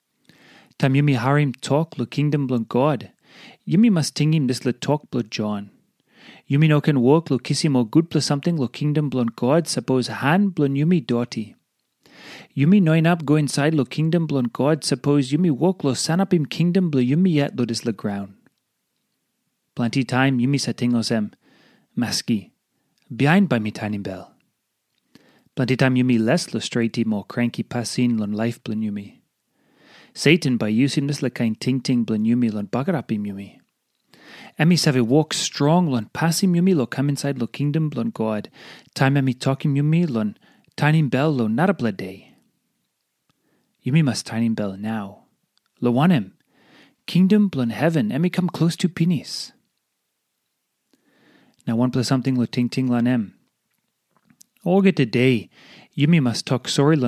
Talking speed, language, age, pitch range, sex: 160 wpm, English, 30-49, 120-155 Hz, male